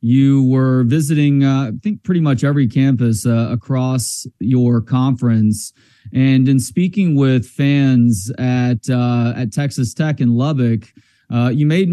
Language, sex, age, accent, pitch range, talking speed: English, male, 30-49, American, 125-155 Hz, 145 wpm